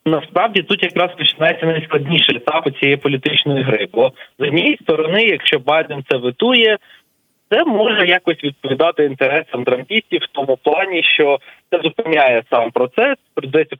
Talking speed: 145 wpm